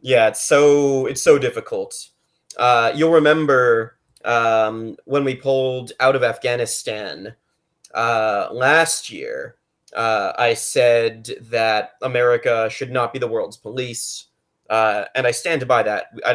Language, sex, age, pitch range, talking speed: English, male, 30-49, 115-150 Hz, 135 wpm